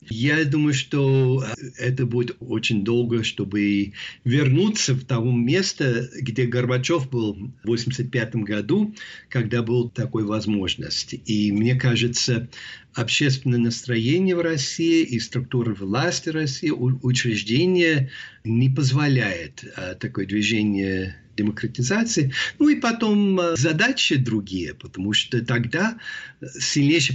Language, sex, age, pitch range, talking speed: Russian, male, 50-69, 115-145 Hz, 105 wpm